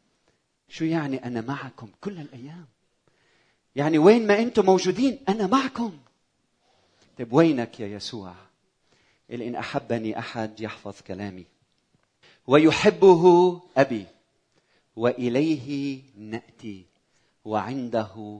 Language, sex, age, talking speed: Arabic, male, 40-59, 95 wpm